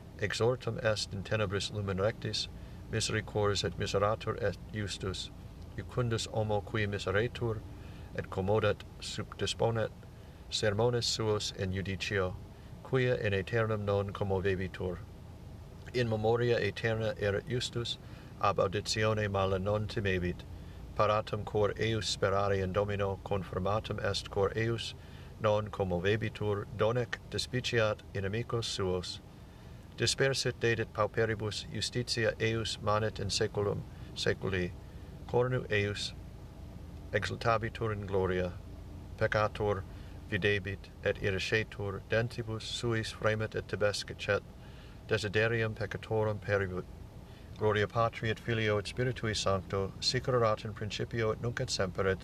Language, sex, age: English, male, 60-79